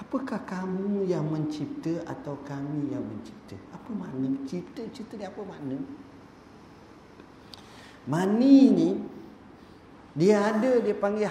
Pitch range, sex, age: 145-215 Hz, male, 40-59